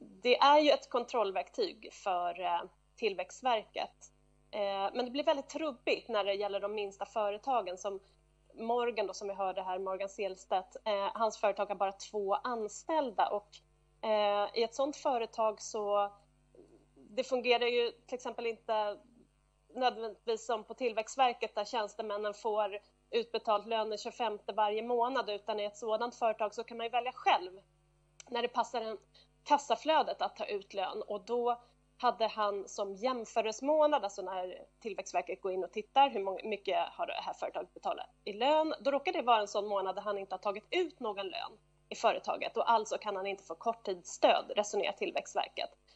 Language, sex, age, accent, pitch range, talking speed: English, female, 30-49, Swedish, 205-245 Hz, 160 wpm